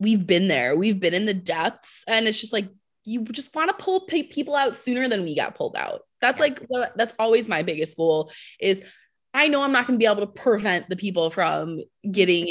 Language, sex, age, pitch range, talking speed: English, female, 20-39, 180-260 Hz, 225 wpm